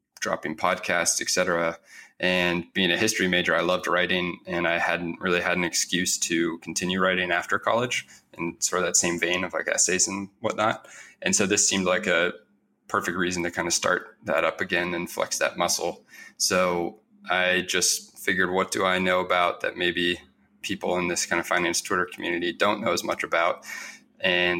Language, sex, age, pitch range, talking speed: English, male, 20-39, 85-95 Hz, 195 wpm